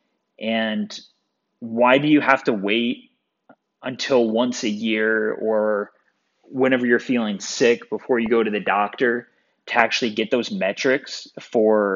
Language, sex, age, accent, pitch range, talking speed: English, male, 20-39, American, 105-130 Hz, 140 wpm